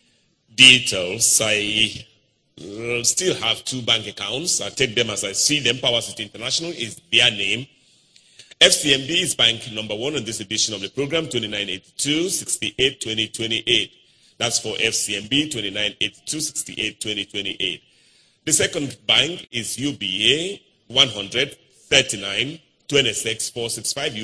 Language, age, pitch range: English, 40-59, 105-135 Hz